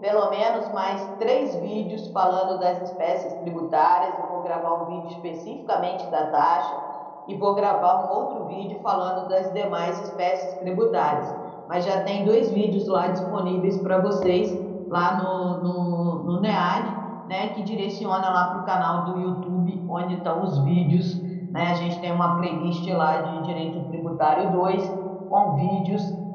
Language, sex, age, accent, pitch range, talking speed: Portuguese, female, 20-39, Brazilian, 175-200 Hz, 145 wpm